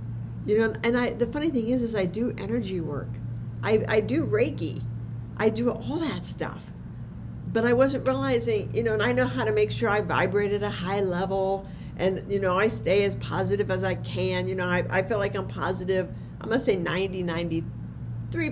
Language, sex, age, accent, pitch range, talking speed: English, female, 50-69, American, 115-190 Hz, 210 wpm